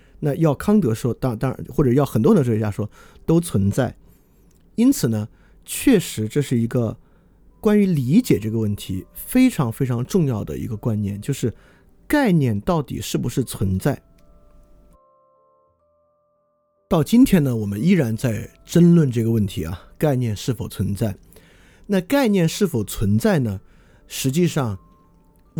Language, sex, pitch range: Chinese, male, 100-165 Hz